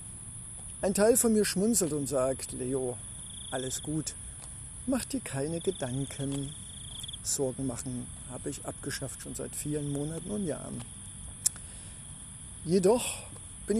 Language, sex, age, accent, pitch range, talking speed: German, male, 50-69, German, 130-190 Hz, 115 wpm